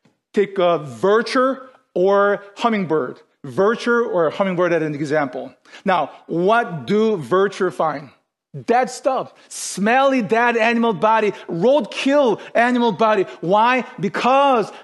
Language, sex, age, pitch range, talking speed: English, male, 40-59, 200-255 Hz, 110 wpm